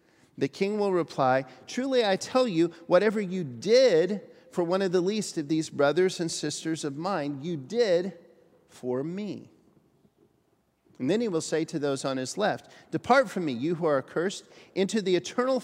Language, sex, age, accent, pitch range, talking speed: English, male, 40-59, American, 145-200 Hz, 180 wpm